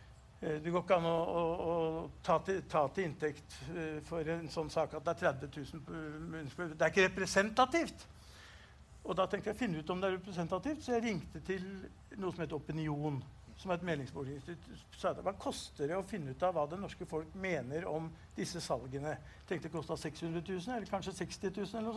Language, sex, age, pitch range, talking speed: English, male, 60-79, 160-210 Hz, 200 wpm